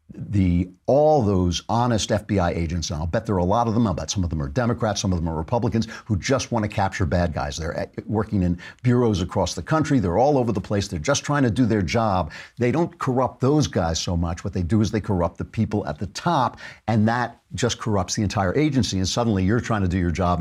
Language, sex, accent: English, male, American